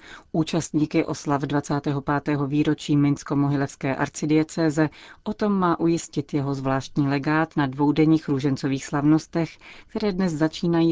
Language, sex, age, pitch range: Czech, female, 40-59, 135-155 Hz